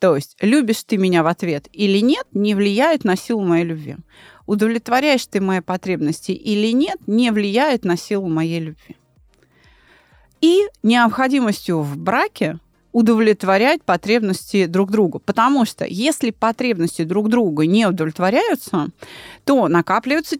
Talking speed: 130 wpm